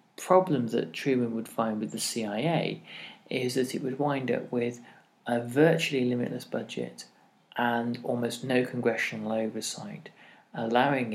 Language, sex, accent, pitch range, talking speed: English, male, British, 110-140 Hz, 135 wpm